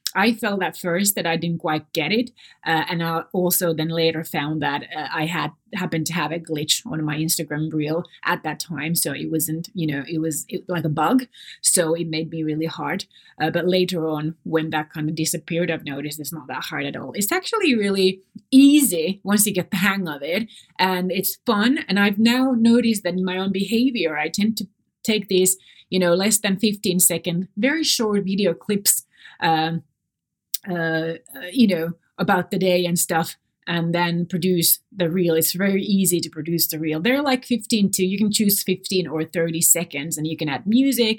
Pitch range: 160-200 Hz